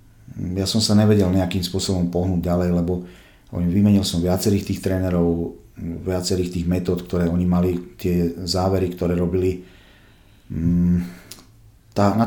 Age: 40-59